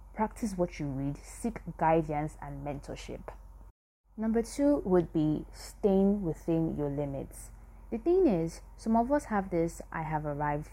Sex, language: female, English